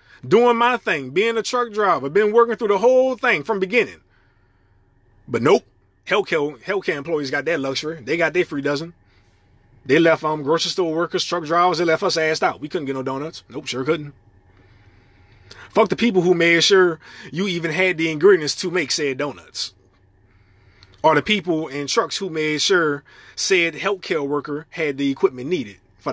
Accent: American